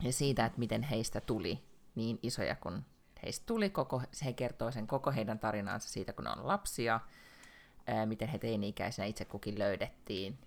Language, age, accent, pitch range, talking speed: Finnish, 30-49, native, 105-125 Hz, 160 wpm